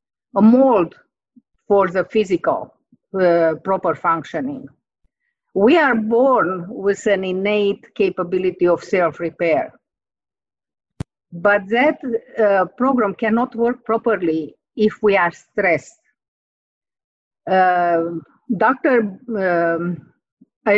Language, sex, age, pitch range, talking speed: English, female, 50-69, 180-230 Hz, 90 wpm